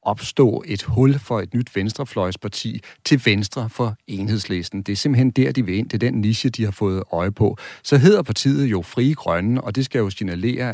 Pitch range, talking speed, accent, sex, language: 100-125 Hz, 210 wpm, native, male, Danish